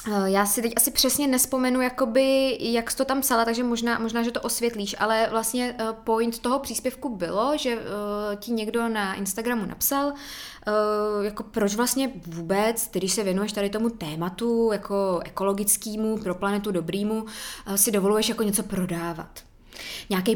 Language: Czech